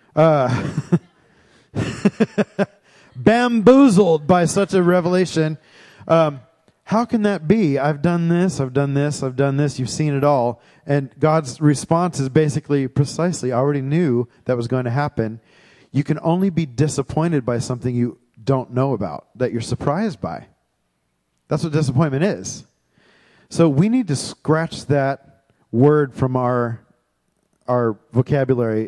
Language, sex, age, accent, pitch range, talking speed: English, male, 40-59, American, 120-165 Hz, 140 wpm